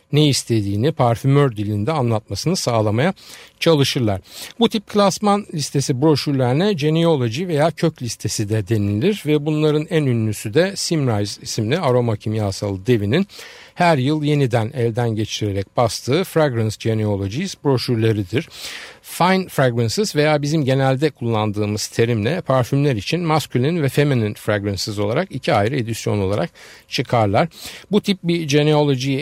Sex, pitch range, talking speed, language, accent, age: male, 115-160 Hz, 125 wpm, Turkish, native, 50-69